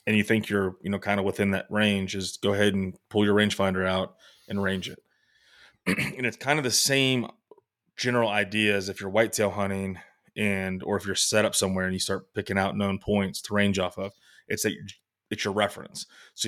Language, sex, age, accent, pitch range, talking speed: English, male, 20-39, American, 95-110 Hz, 220 wpm